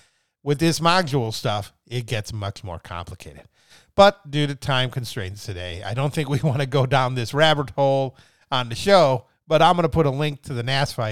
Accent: American